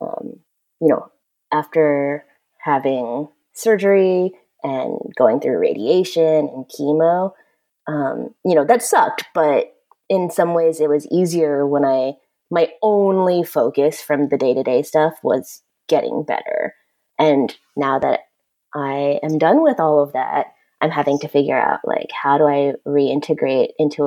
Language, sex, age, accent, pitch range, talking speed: English, female, 20-39, American, 145-185 Hz, 145 wpm